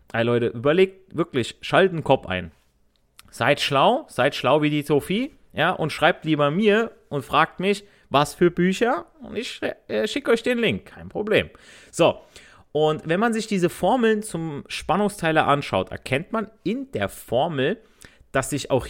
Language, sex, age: German, male, 30-49